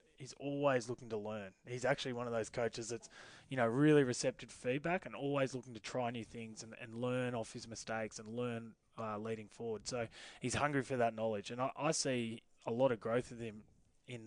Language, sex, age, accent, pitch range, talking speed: English, male, 20-39, Australian, 115-125 Hz, 220 wpm